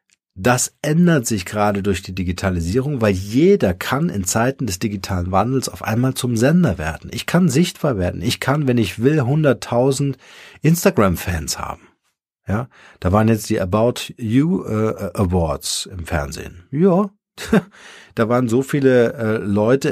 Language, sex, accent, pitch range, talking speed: German, male, German, 95-135 Hz, 150 wpm